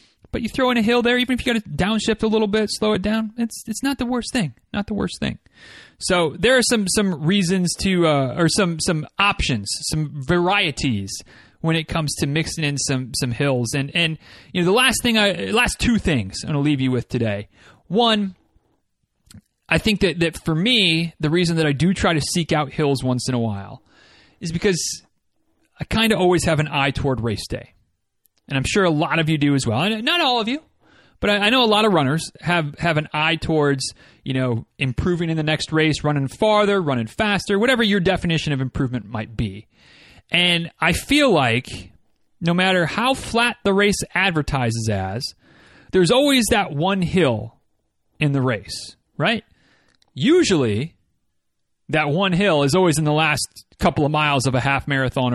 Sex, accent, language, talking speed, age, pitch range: male, American, English, 200 wpm, 30-49, 135-200 Hz